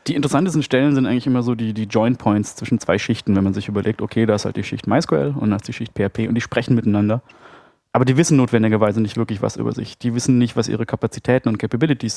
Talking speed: 255 wpm